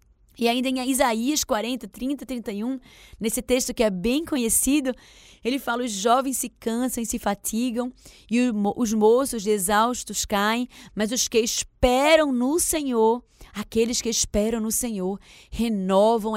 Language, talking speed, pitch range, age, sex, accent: Portuguese, 145 wpm, 225-265 Hz, 20-39, female, Brazilian